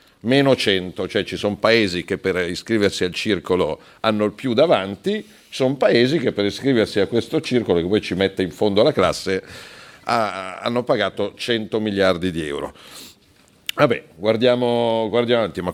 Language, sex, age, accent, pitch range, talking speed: Italian, male, 50-69, native, 95-130 Hz, 165 wpm